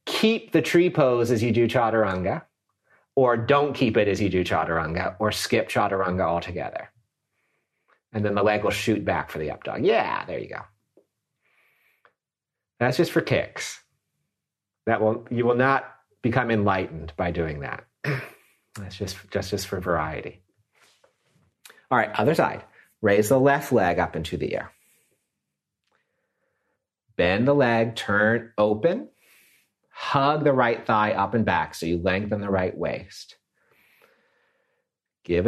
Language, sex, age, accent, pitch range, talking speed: English, male, 40-59, American, 100-140 Hz, 145 wpm